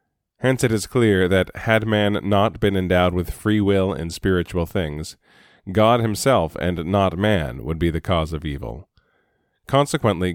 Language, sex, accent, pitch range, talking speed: English, male, American, 85-110 Hz, 160 wpm